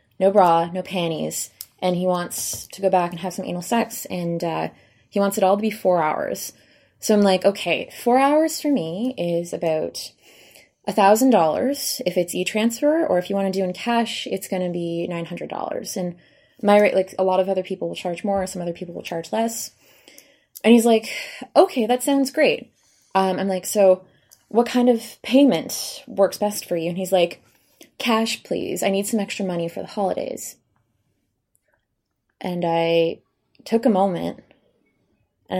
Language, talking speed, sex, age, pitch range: English, 180 wpm, female, 20-39, 175-225 Hz